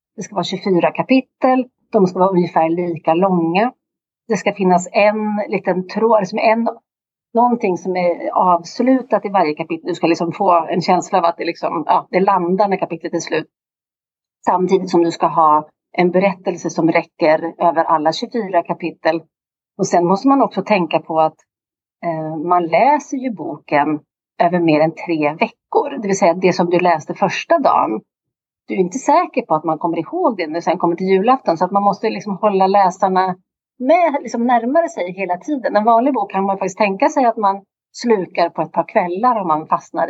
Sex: female